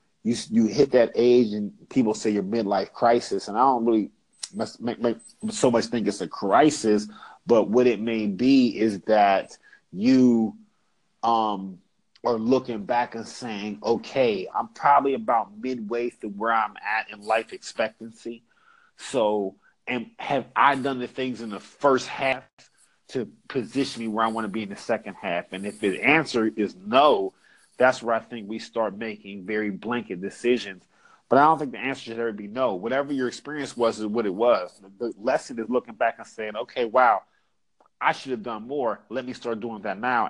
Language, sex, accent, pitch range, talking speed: English, male, American, 110-125 Hz, 190 wpm